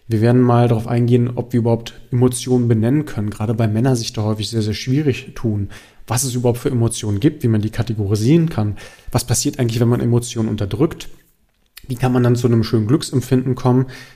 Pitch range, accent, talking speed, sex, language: 110-130 Hz, German, 205 wpm, male, German